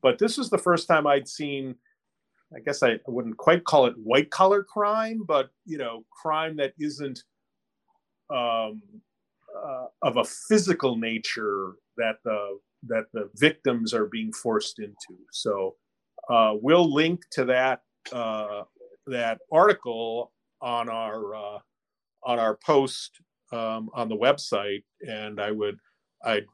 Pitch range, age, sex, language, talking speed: 110-155 Hz, 40-59, male, English, 140 wpm